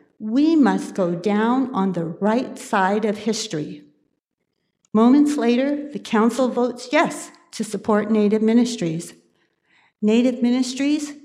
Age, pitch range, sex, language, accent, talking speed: 60-79, 190-250 Hz, female, English, American, 115 wpm